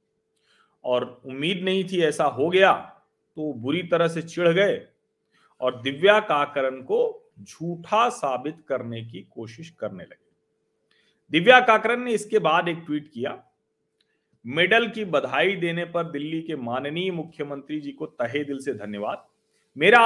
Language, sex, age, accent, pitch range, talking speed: Hindi, male, 40-59, native, 135-185 Hz, 85 wpm